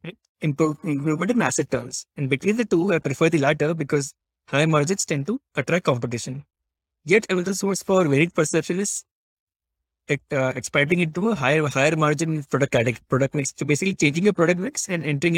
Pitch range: 135-170 Hz